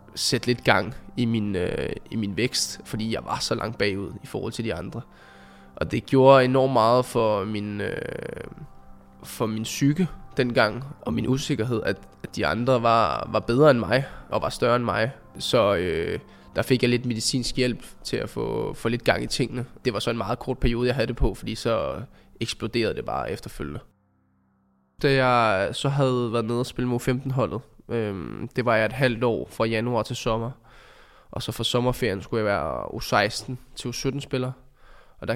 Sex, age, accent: male, 20-39, native